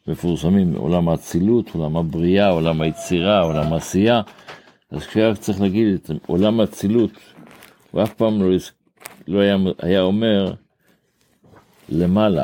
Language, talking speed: Hebrew, 110 wpm